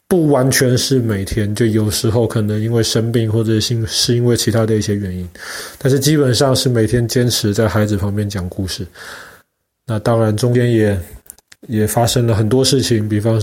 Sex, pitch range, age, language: male, 105-125 Hz, 20-39, Chinese